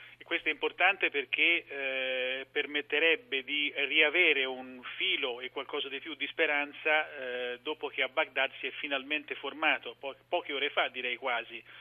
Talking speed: 165 wpm